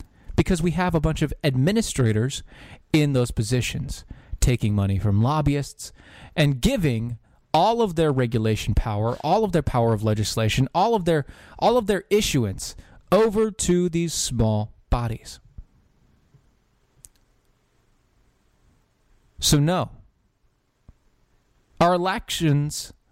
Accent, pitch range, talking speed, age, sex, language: American, 120-165 Hz, 110 wpm, 20-39, male, English